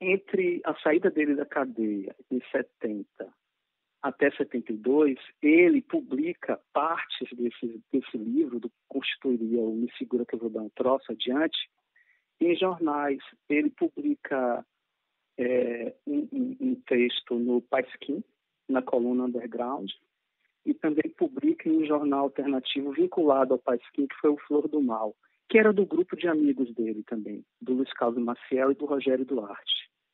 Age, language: 40-59, Portuguese